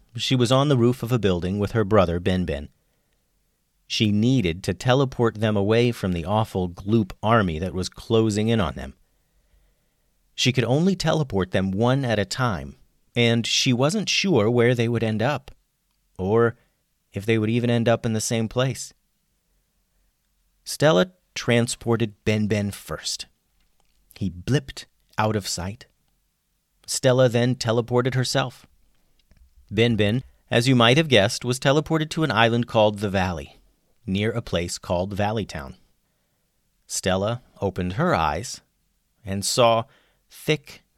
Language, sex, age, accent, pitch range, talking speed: English, male, 40-59, American, 95-120 Hz, 145 wpm